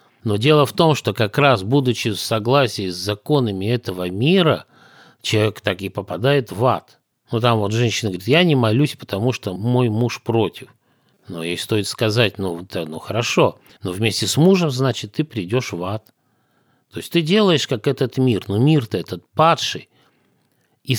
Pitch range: 100-140 Hz